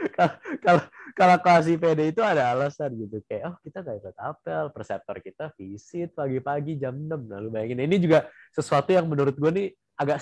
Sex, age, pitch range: male, 20-39, 110-155 Hz